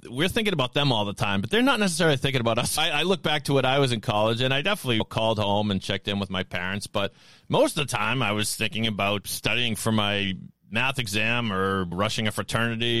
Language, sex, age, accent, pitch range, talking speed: English, male, 40-59, American, 100-130 Hz, 245 wpm